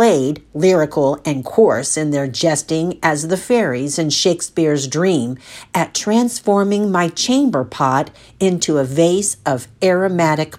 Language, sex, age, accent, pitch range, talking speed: English, female, 50-69, American, 145-195 Hz, 125 wpm